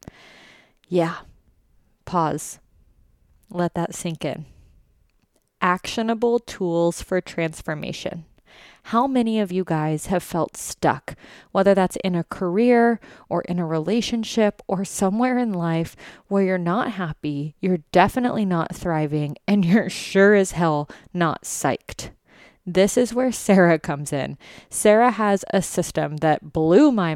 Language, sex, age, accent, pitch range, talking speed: English, female, 20-39, American, 160-200 Hz, 130 wpm